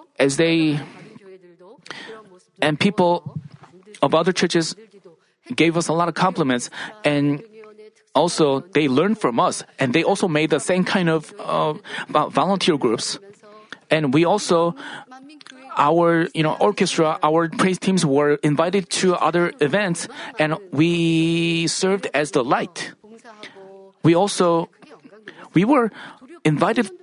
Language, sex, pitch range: Korean, male, 165-220 Hz